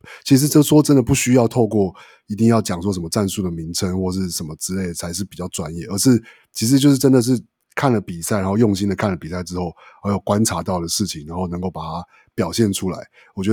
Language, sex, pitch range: Chinese, male, 90-110 Hz